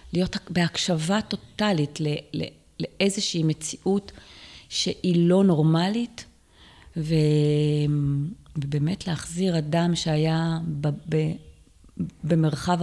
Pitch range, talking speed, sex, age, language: 150-180 Hz, 70 wpm, female, 30-49, Hebrew